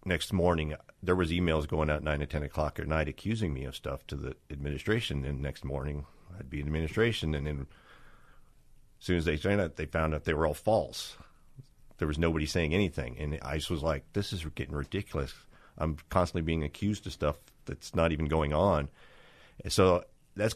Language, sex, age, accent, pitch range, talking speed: English, male, 50-69, American, 75-90 Hz, 205 wpm